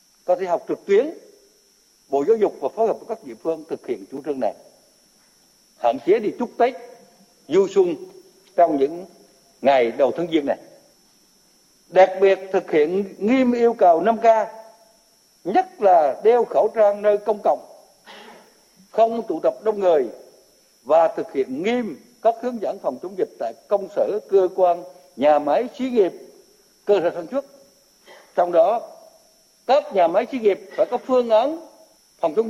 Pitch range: 205-325 Hz